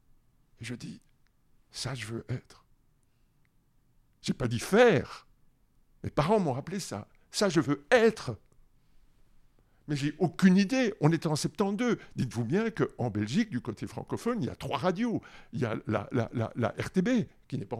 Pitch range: 125-180 Hz